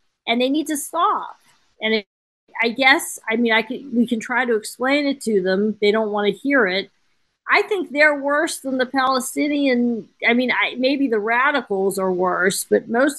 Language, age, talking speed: English, 40-59, 200 wpm